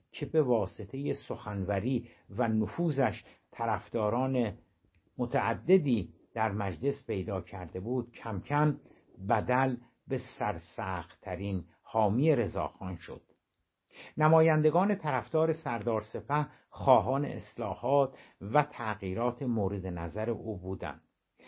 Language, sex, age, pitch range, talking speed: Persian, male, 60-79, 105-135 Hz, 90 wpm